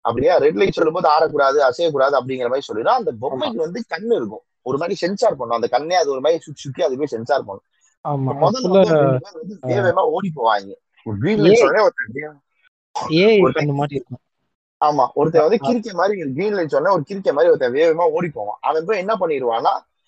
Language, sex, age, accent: Tamil, male, 30-49, native